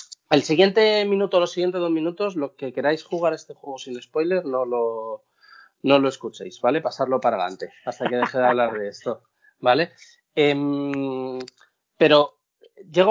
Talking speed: 160 wpm